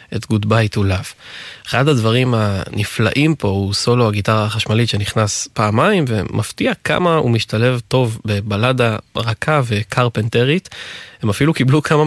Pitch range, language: 105-130 Hz, Hebrew